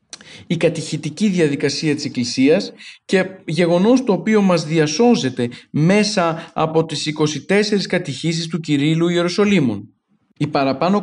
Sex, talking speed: male, 115 wpm